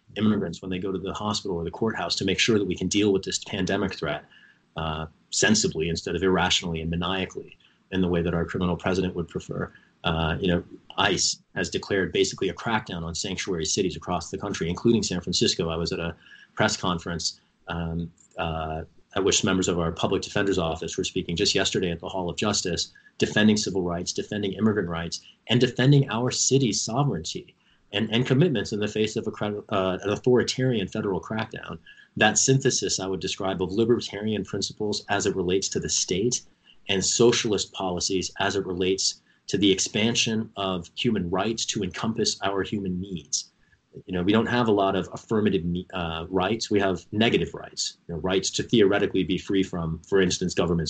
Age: 30-49